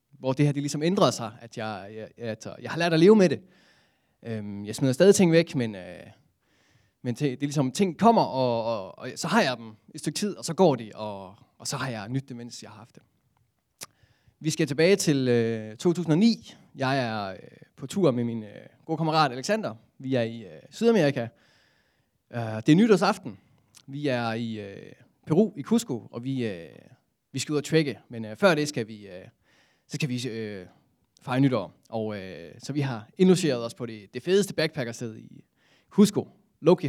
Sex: male